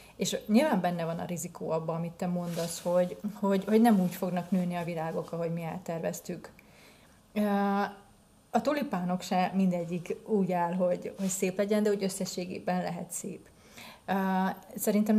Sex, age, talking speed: female, 30-49, 145 wpm